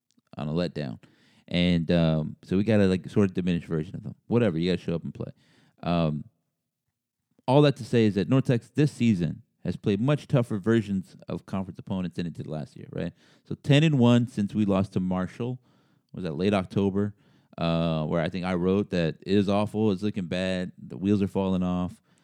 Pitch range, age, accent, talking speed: 95-120 Hz, 30-49, American, 215 wpm